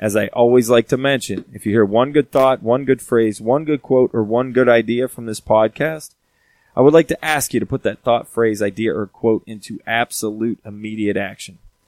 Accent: American